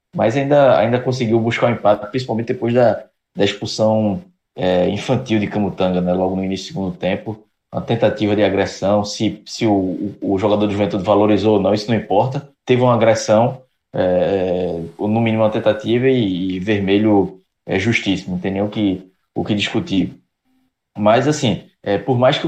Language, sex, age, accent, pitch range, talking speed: Portuguese, male, 20-39, Brazilian, 100-120 Hz, 165 wpm